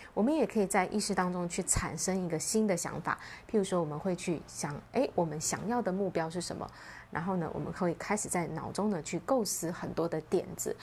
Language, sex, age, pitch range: Chinese, female, 20-39, 165-220 Hz